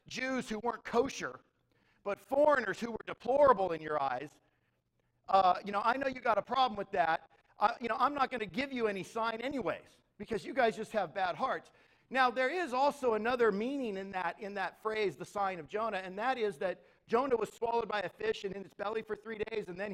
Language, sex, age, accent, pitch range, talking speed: English, male, 50-69, American, 190-245 Hz, 230 wpm